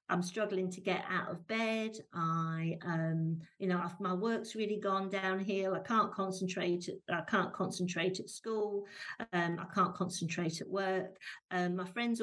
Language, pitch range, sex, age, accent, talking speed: English, 175-195 Hz, female, 50-69, British, 160 wpm